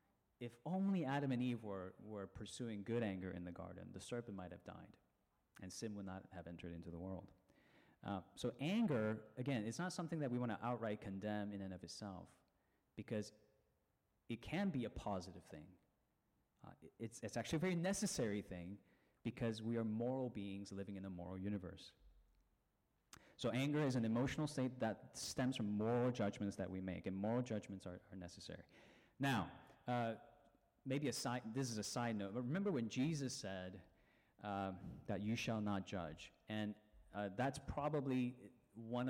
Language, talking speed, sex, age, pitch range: English, 175 wpm, male, 30-49, 95-125 Hz